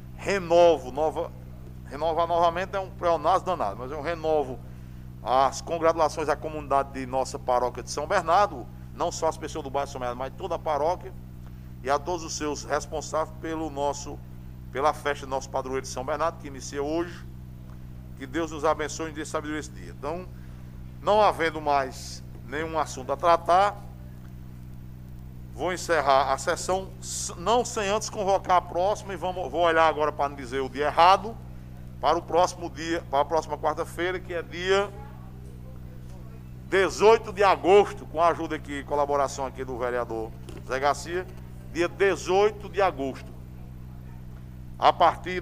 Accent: Brazilian